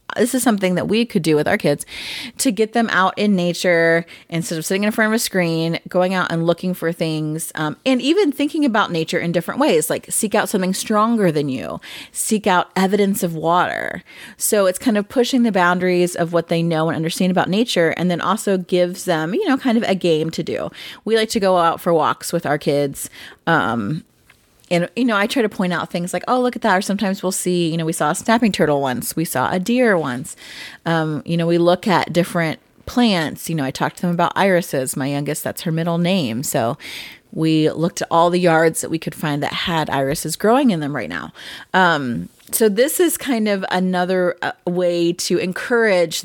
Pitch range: 165-215 Hz